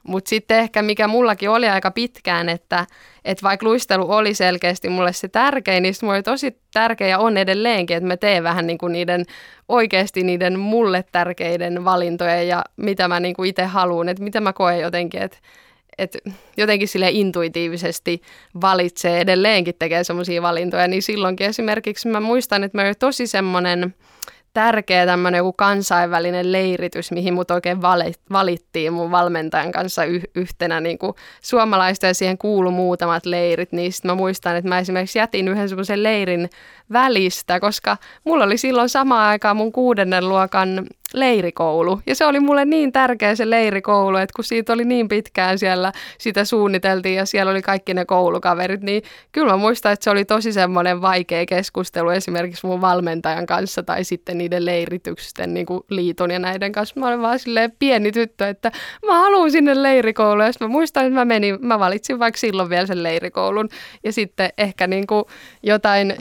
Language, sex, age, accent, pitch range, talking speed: Finnish, female, 10-29, native, 180-220 Hz, 170 wpm